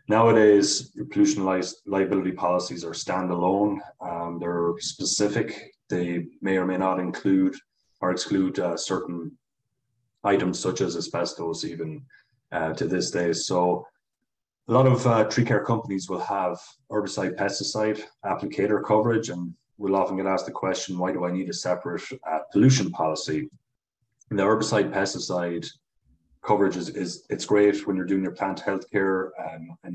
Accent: Irish